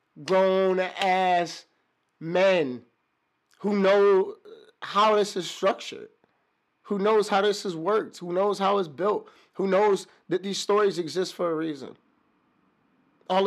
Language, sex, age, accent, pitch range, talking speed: English, male, 30-49, American, 135-185 Hz, 130 wpm